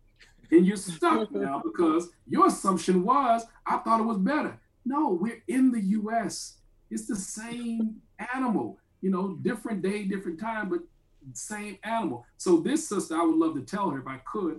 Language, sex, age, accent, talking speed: English, male, 50-69, American, 175 wpm